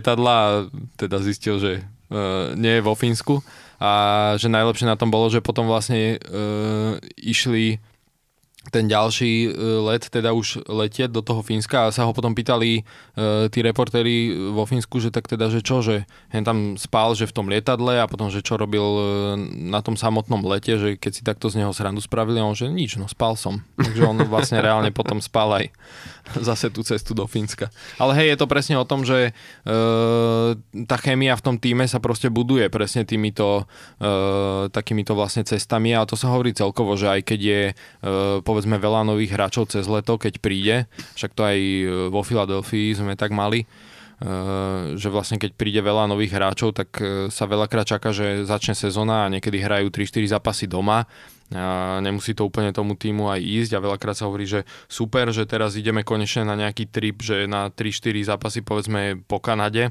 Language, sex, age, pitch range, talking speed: Slovak, male, 20-39, 105-115 Hz, 185 wpm